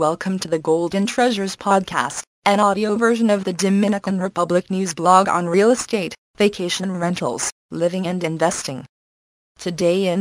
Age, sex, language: 20-39, female, English